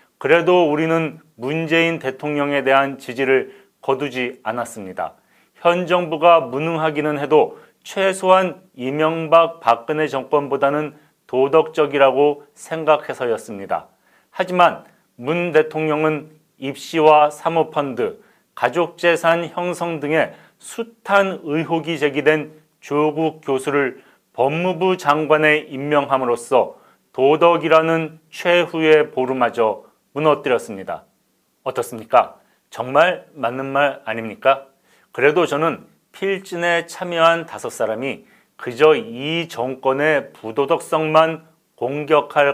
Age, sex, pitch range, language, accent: 40-59, male, 145-170 Hz, Korean, native